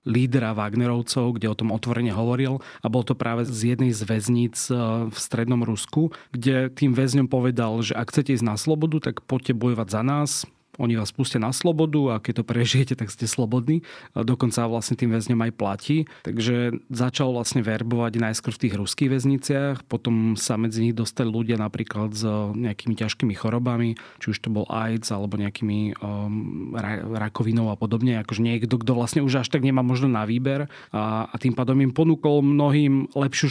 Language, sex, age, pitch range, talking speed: Slovak, male, 30-49, 110-130 Hz, 185 wpm